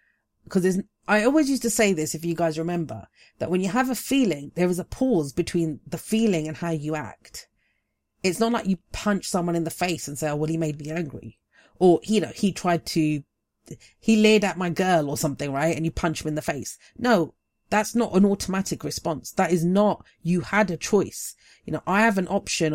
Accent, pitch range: British, 155-195 Hz